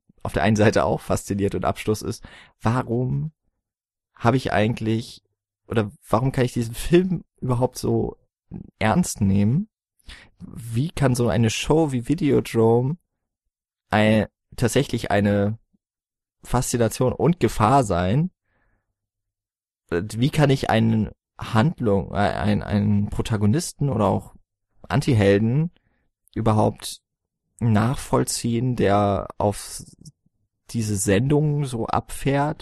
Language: German